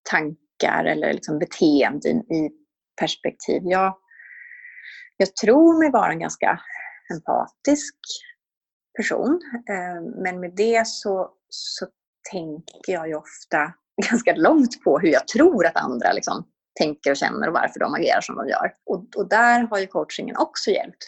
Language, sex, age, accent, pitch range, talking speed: Swedish, female, 30-49, native, 185-285 Hz, 145 wpm